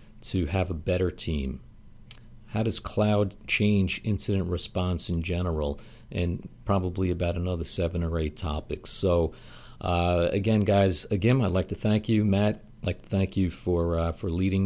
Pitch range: 90-110 Hz